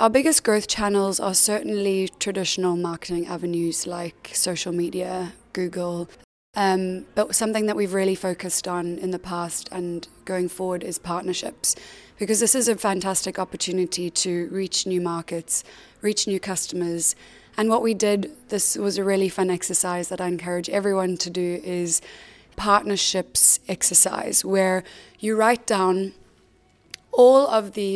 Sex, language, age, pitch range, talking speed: female, English, 20-39, 180-210 Hz, 145 wpm